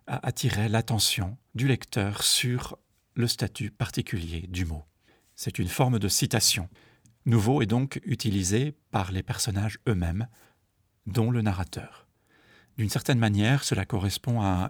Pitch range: 100-120 Hz